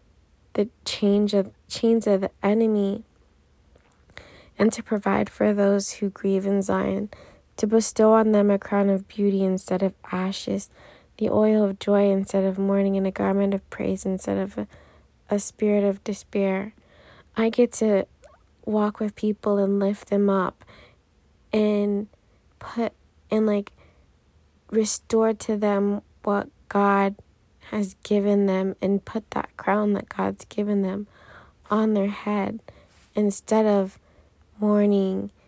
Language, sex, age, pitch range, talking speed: English, female, 20-39, 195-215 Hz, 140 wpm